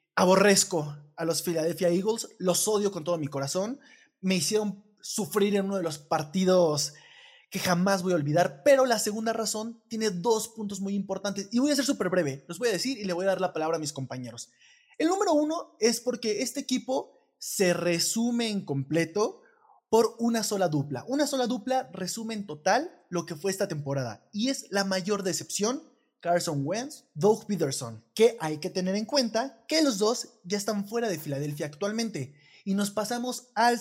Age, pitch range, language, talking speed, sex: 20-39, 170-230 Hz, Spanish, 190 wpm, male